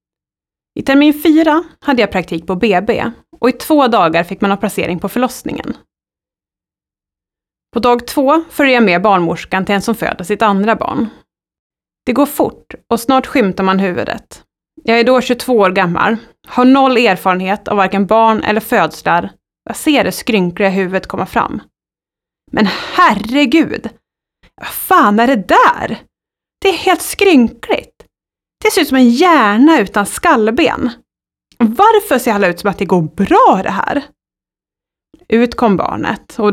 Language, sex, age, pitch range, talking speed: Swedish, female, 30-49, 195-265 Hz, 155 wpm